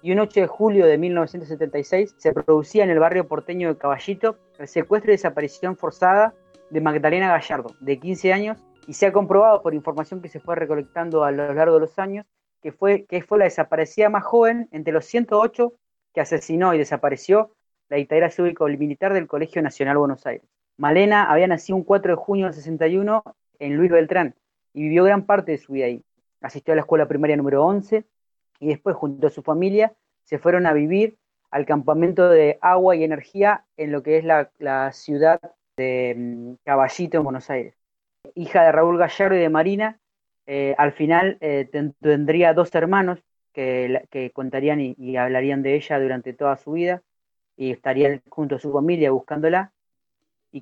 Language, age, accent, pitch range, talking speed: Spanish, 30-49, Argentinian, 150-185 Hz, 185 wpm